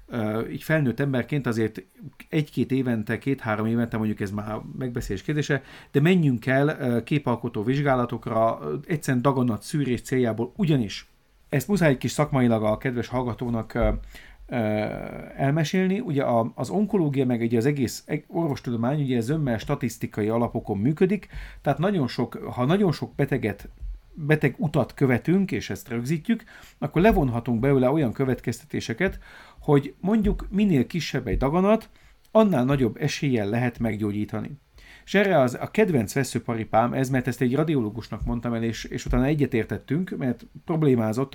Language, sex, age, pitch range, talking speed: Hungarian, male, 40-59, 115-145 Hz, 135 wpm